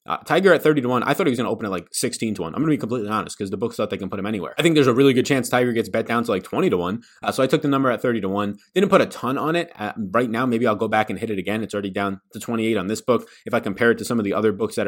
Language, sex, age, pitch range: English, male, 20-39, 110-140 Hz